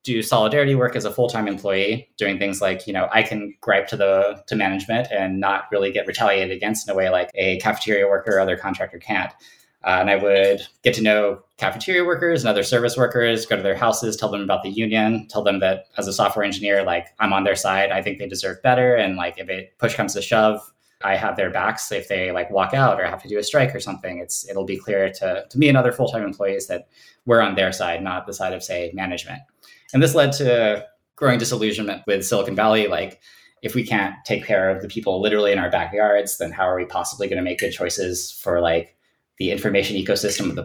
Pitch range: 95-120 Hz